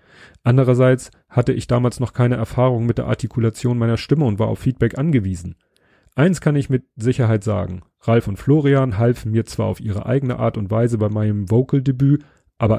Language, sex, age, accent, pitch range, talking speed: German, male, 30-49, German, 105-135 Hz, 185 wpm